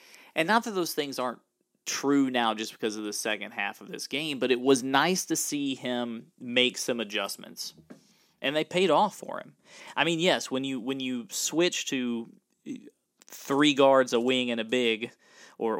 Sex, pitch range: male, 115-145 Hz